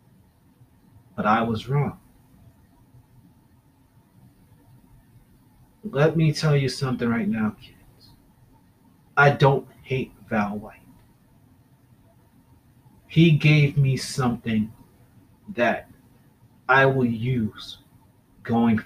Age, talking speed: 30-49, 85 wpm